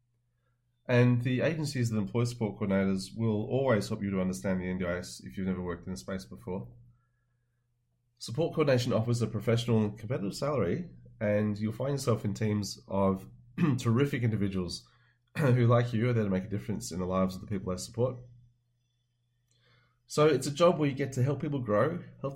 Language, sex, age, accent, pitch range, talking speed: English, male, 30-49, Australian, 100-125 Hz, 185 wpm